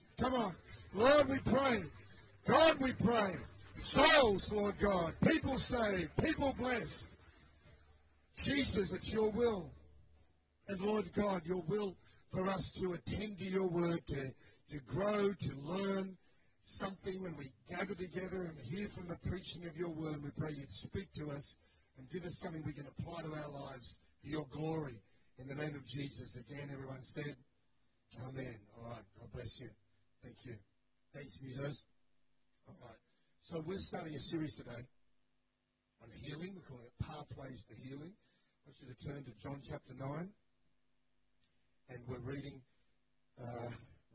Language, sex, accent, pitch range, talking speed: English, male, Australian, 120-170 Hz, 155 wpm